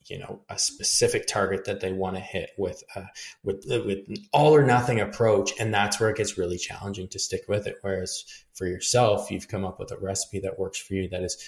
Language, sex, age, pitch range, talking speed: English, male, 20-39, 95-120 Hz, 235 wpm